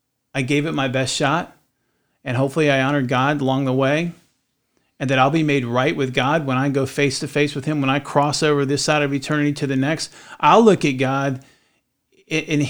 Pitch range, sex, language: 130-150 Hz, male, English